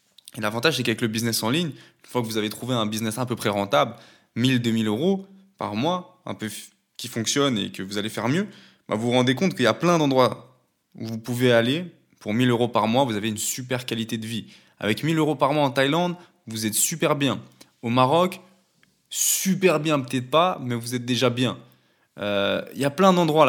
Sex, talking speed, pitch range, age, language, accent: male, 225 wpm, 115-150 Hz, 20-39, French, French